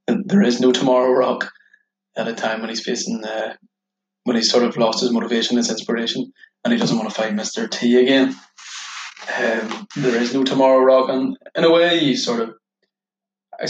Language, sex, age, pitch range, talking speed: English, male, 20-39, 120-195 Hz, 195 wpm